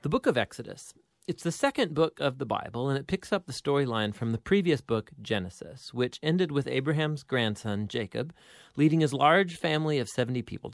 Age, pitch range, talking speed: 40-59, 115-155 Hz, 195 wpm